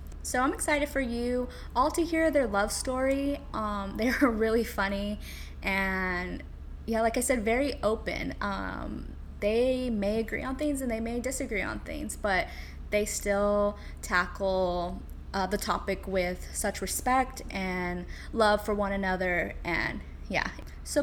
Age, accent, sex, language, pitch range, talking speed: 10-29, American, female, English, 195-250 Hz, 150 wpm